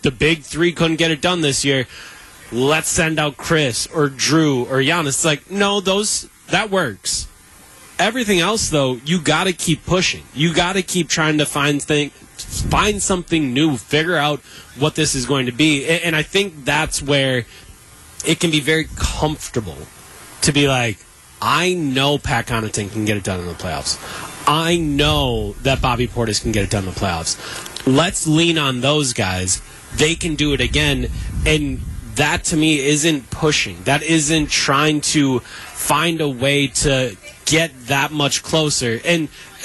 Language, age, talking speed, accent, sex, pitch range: English, 20-39, 175 wpm, American, male, 130-165 Hz